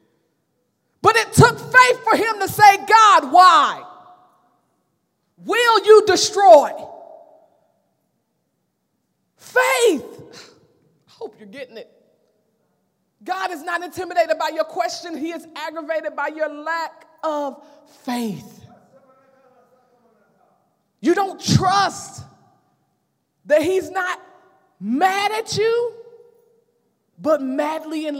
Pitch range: 275-380 Hz